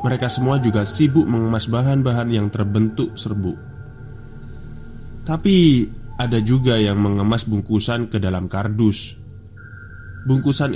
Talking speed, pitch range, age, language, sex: 105 wpm, 105-125 Hz, 20-39, Indonesian, male